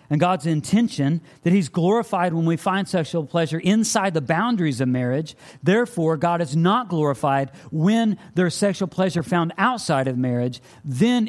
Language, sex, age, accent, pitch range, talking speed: English, male, 50-69, American, 130-200 Hz, 160 wpm